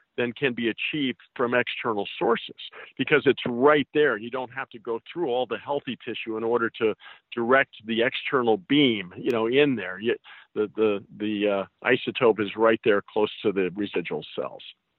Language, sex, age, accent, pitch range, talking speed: English, male, 50-69, American, 105-125 Hz, 175 wpm